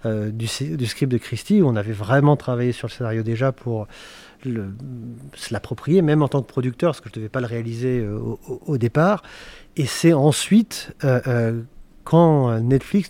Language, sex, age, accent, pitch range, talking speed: French, male, 40-59, French, 120-150 Hz, 195 wpm